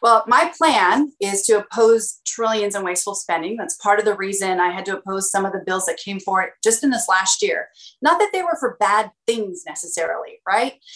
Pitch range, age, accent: 200-270 Hz, 30-49, American